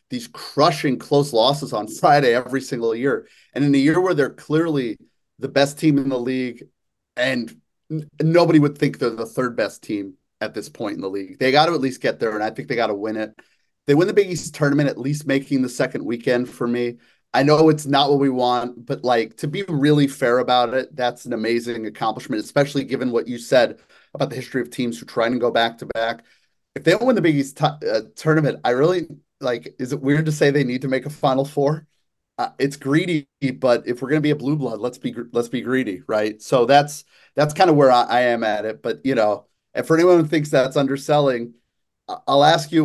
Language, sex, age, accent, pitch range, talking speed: English, male, 30-49, American, 120-150 Hz, 230 wpm